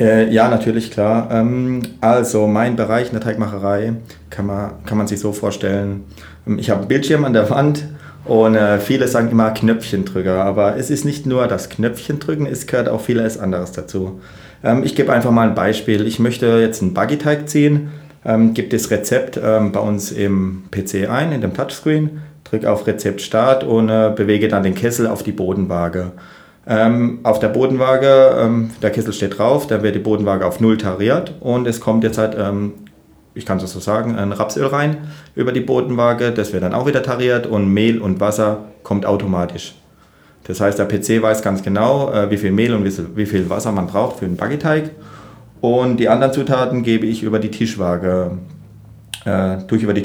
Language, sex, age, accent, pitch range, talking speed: German, male, 30-49, German, 100-120 Hz, 185 wpm